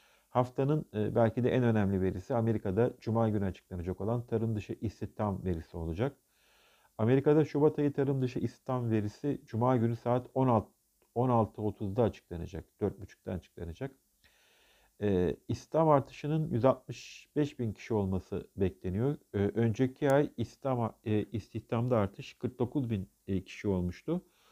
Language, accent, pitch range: Turkish, native, 105-130 Hz